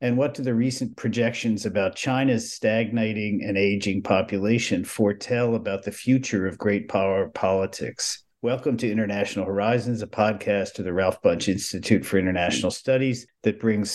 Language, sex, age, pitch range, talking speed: English, male, 50-69, 90-110 Hz, 155 wpm